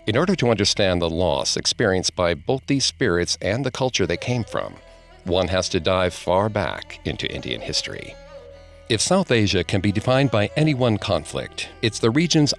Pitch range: 90-120 Hz